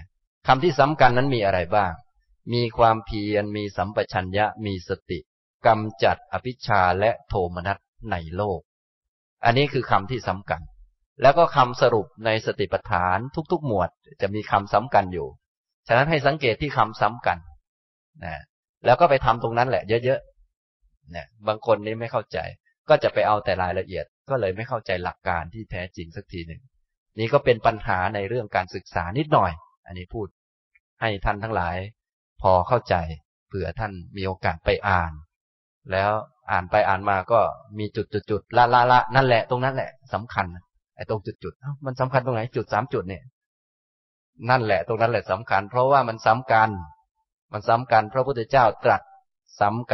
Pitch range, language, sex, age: 95-125 Hz, Thai, male, 20-39